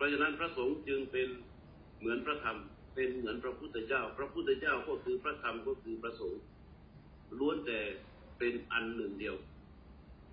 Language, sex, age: Thai, male, 60-79